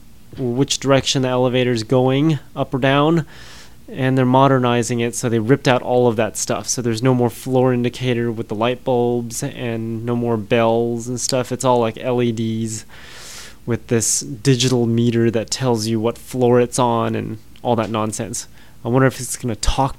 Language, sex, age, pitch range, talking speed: English, male, 20-39, 115-130 Hz, 185 wpm